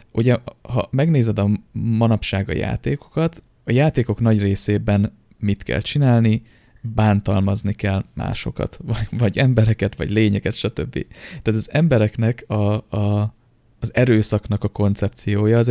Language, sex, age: Hungarian, male, 20-39